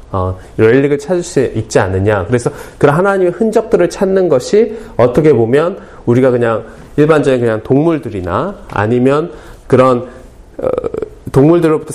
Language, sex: Korean, male